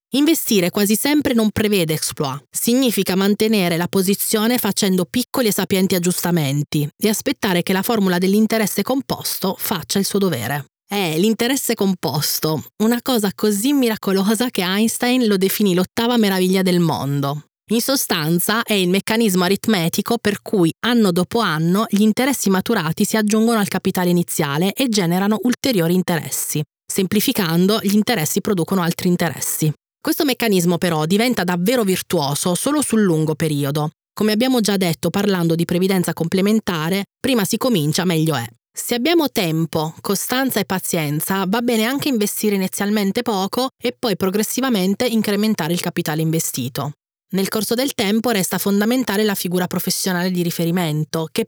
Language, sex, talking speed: Italian, female, 145 wpm